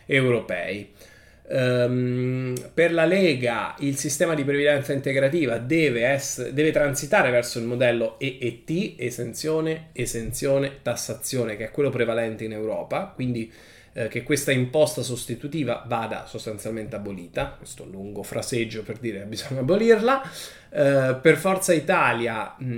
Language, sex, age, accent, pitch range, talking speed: Italian, male, 20-39, native, 115-155 Hz, 120 wpm